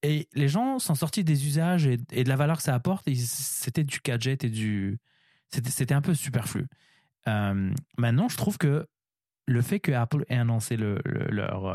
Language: French